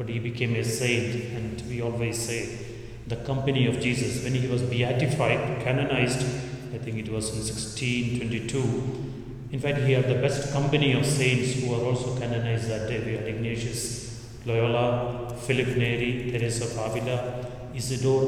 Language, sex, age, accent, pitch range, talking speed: English, male, 30-49, Indian, 115-130 Hz, 160 wpm